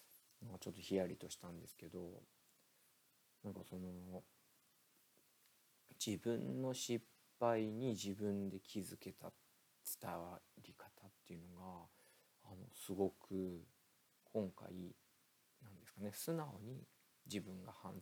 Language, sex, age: Japanese, male, 40-59